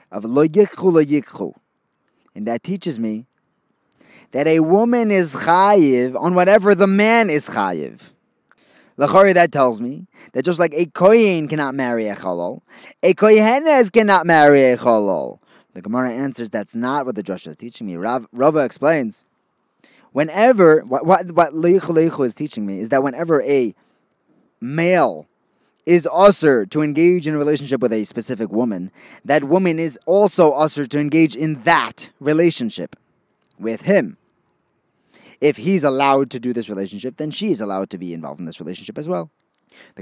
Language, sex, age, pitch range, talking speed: English, male, 20-39, 125-190 Hz, 155 wpm